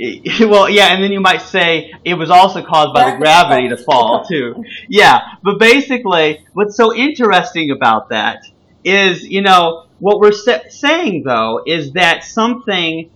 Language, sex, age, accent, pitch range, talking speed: English, male, 30-49, American, 150-205 Hz, 160 wpm